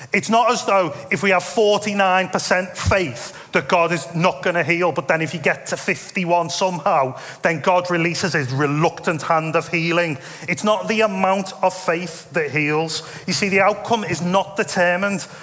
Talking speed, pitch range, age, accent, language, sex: 185 wpm, 165-195 Hz, 30-49, British, English, male